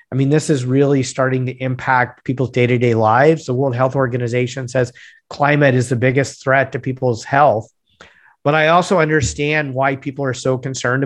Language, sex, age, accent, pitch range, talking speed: English, male, 50-69, American, 125-145 Hz, 180 wpm